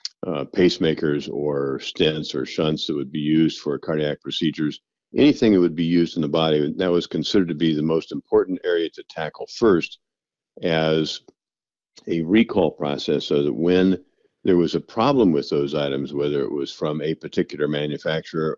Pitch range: 75-90 Hz